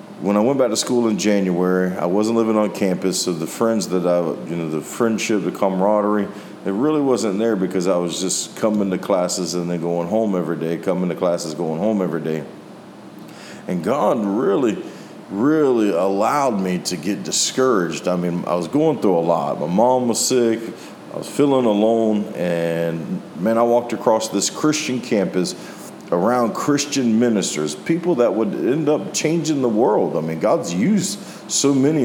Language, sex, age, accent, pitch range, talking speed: English, male, 40-59, American, 90-125 Hz, 185 wpm